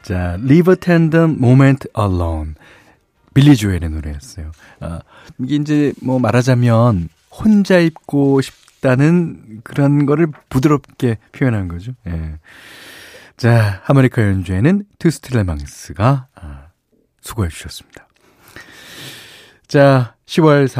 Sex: male